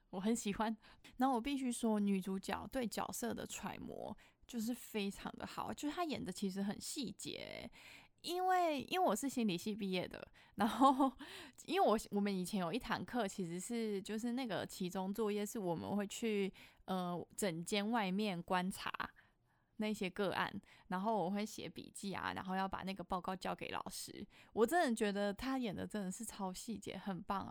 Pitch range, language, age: 195-240 Hz, Chinese, 20-39